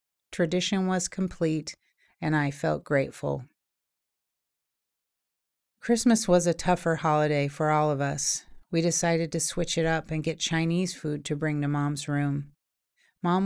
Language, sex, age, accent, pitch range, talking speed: English, female, 40-59, American, 150-170 Hz, 145 wpm